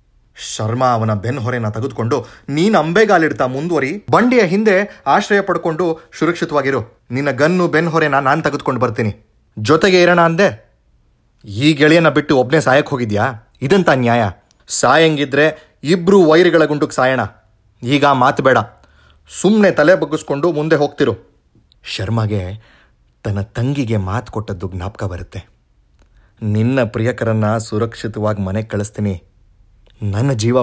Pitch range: 105-150 Hz